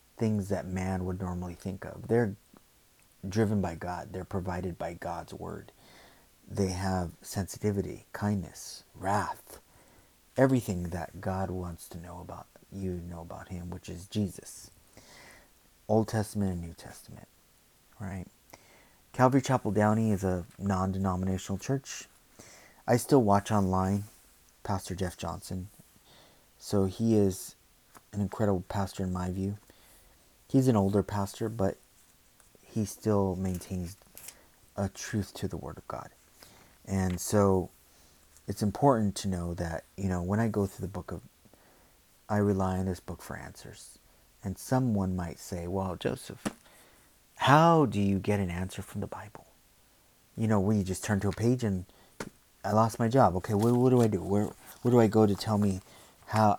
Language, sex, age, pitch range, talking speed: English, male, 30-49, 90-105 Hz, 155 wpm